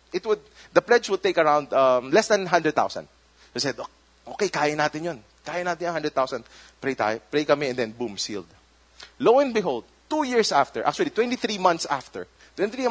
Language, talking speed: English, 185 wpm